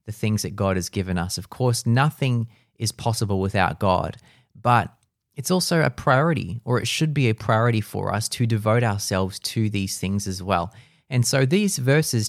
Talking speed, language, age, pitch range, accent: 190 wpm, English, 30-49, 100-125 Hz, Australian